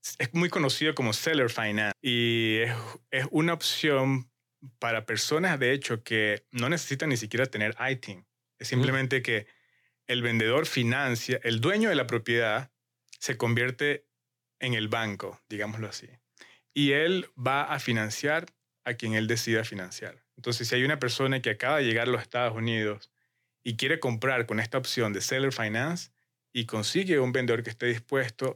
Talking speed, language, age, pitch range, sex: 165 wpm, English, 30-49, 115-130 Hz, male